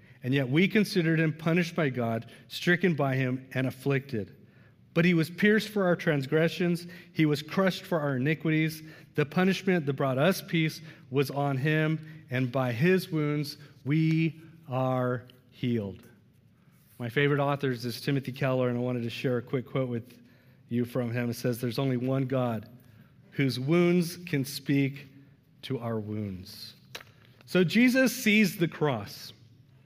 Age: 40-59